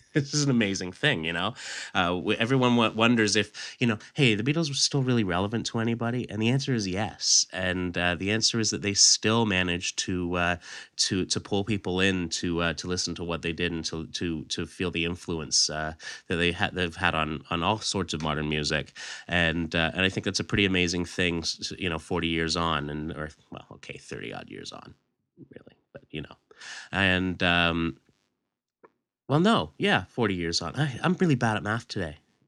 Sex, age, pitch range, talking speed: male, 30-49, 85-110 Hz, 210 wpm